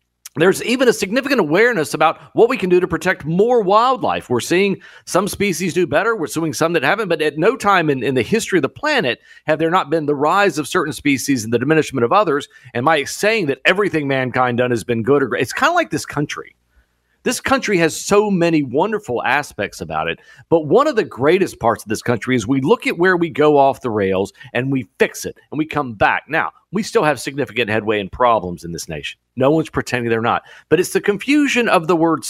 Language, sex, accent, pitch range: English, male, American, 120-185 Hz